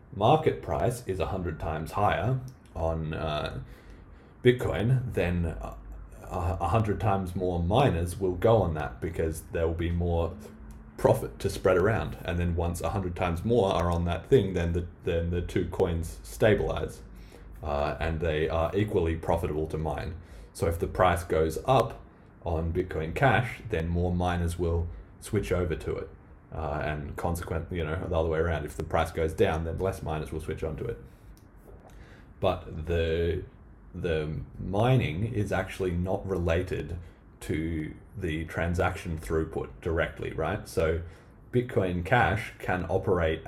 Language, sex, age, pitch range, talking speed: English, male, 30-49, 80-95 Hz, 150 wpm